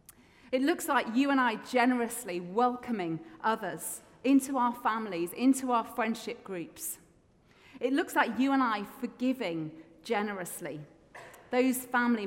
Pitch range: 195-265 Hz